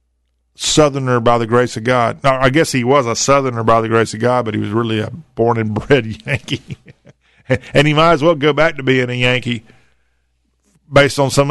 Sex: male